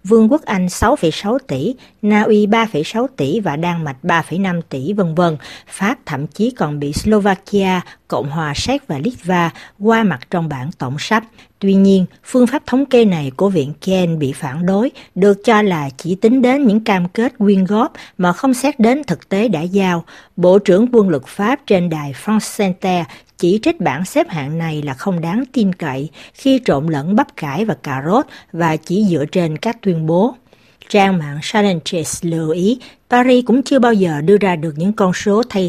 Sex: female